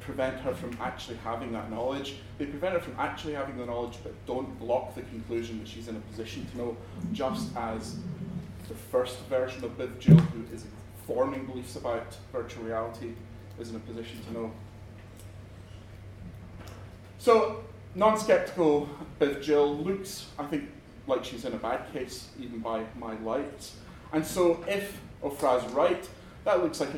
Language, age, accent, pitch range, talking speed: English, 30-49, British, 115-160 Hz, 160 wpm